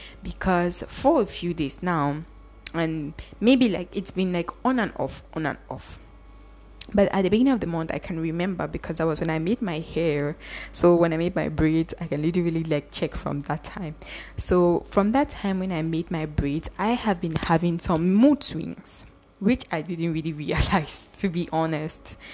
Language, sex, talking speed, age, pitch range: English, female, 200 wpm, 10-29, 160-200 Hz